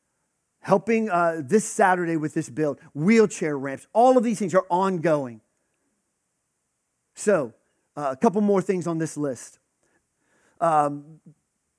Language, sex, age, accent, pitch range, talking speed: English, male, 40-59, American, 145-200 Hz, 125 wpm